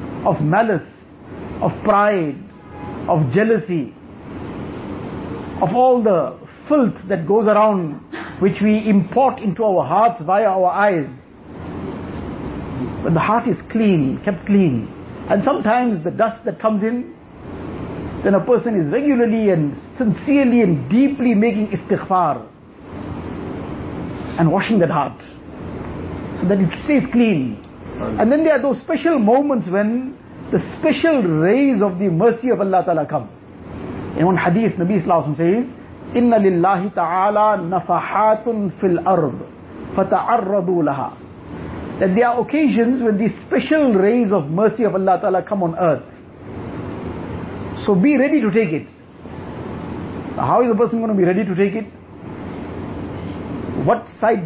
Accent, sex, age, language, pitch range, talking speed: Indian, male, 60-79, English, 180-230 Hz, 135 wpm